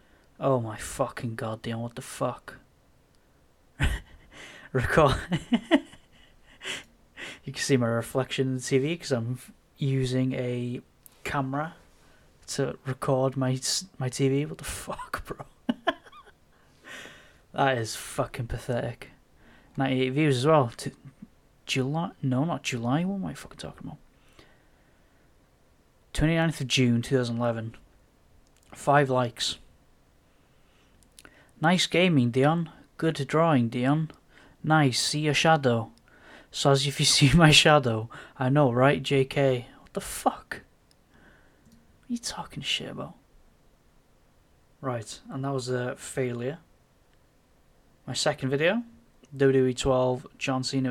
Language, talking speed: English, 120 wpm